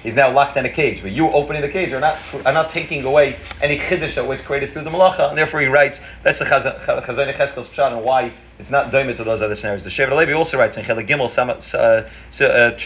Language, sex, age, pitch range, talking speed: English, male, 30-49, 115-150 Hz, 245 wpm